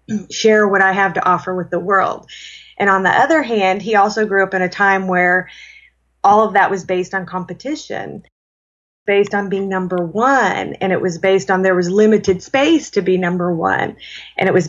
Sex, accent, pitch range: female, American, 185-205 Hz